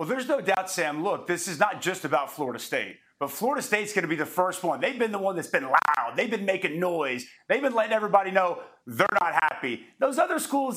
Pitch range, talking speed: 150-195 Hz, 245 wpm